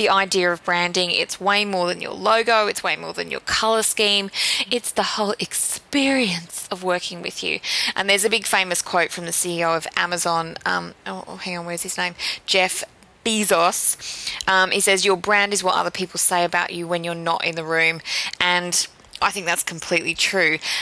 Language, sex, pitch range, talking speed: English, female, 180-220 Hz, 200 wpm